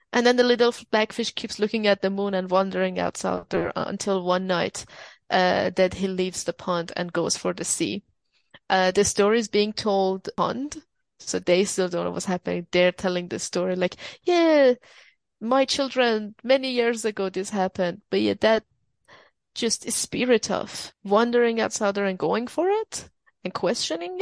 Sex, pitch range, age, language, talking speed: female, 190-240 Hz, 20-39, English, 175 wpm